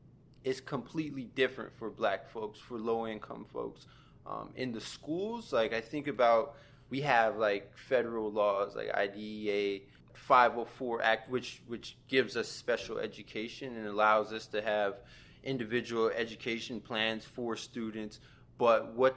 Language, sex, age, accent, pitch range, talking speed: English, male, 20-39, American, 110-135 Hz, 145 wpm